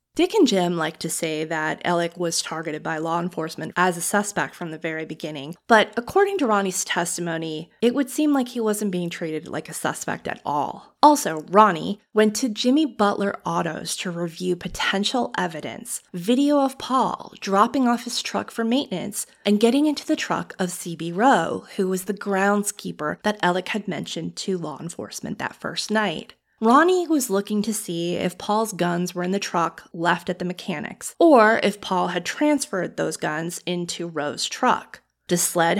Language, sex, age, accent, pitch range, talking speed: English, female, 20-39, American, 175-245 Hz, 180 wpm